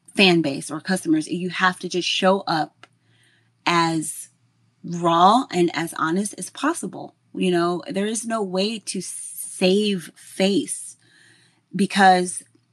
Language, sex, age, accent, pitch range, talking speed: English, female, 20-39, American, 160-190 Hz, 125 wpm